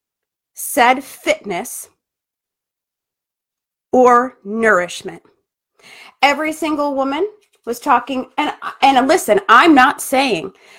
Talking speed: 85 wpm